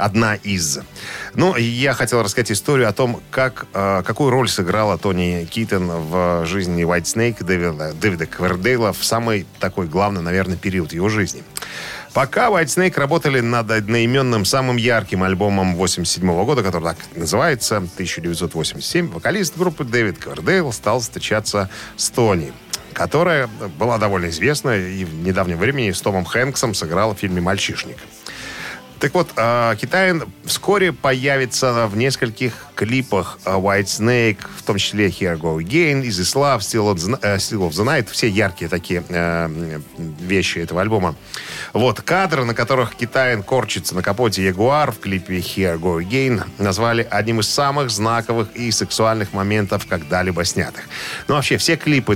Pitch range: 95-125 Hz